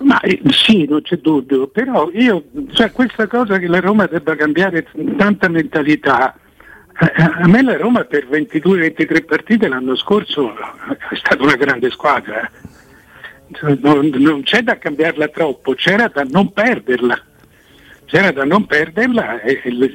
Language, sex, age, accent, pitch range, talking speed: Italian, male, 60-79, native, 145-200 Hz, 145 wpm